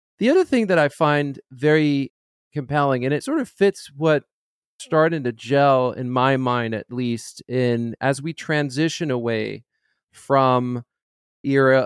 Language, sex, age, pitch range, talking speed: English, male, 40-59, 125-155 Hz, 145 wpm